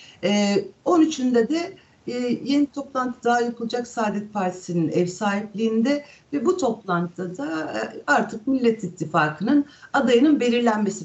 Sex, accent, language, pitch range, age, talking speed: female, native, Turkish, 200-275 Hz, 60-79, 105 wpm